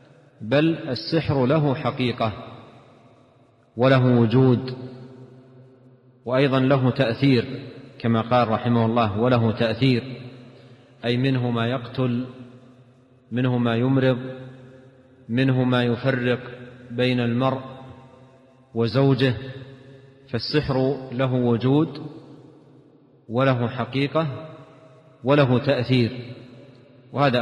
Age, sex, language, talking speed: 40-59, male, Arabic, 80 wpm